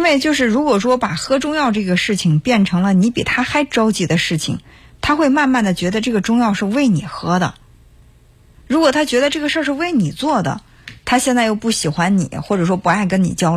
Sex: female